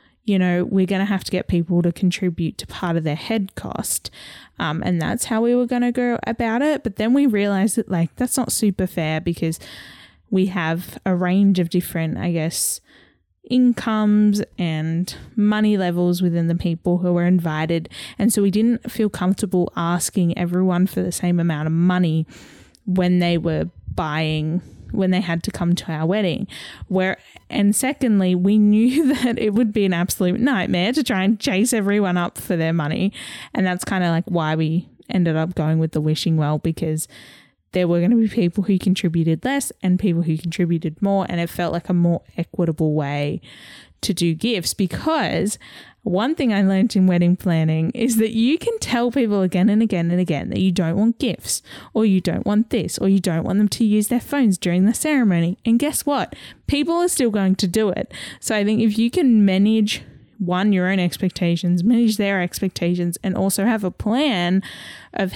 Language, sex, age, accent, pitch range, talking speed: English, female, 10-29, Australian, 170-215 Hz, 195 wpm